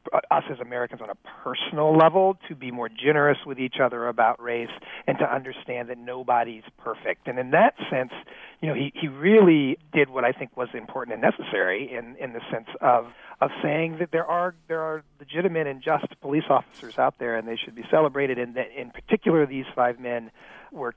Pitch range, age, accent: 125-165 Hz, 40-59, American